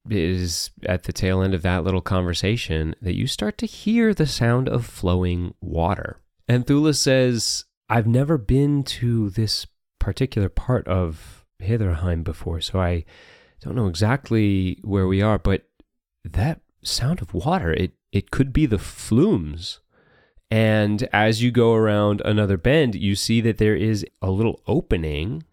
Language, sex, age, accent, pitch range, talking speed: English, male, 30-49, American, 85-110 Hz, 155 wpm